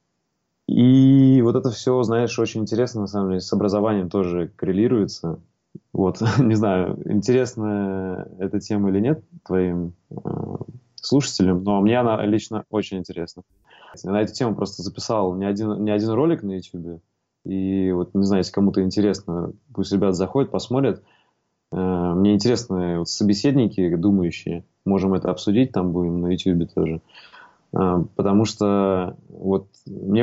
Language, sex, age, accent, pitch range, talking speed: Russian, male, 20-39, native, 95-110 Hz, 145 wpm